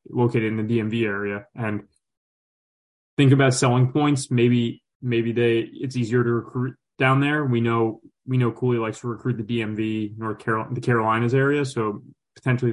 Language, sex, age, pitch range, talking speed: English, male, 20-39, 110-130 Hz, 170 wpm